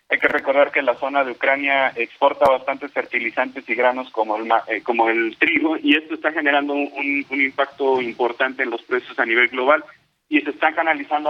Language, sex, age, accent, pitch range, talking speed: Spanish, male, 40-59, Mexican, 125-150 Hz, 195 wpm